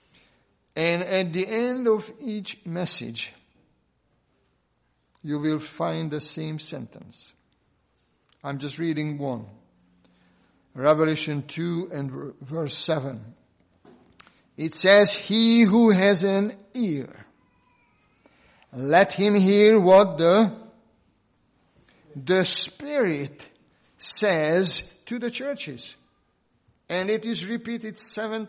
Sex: male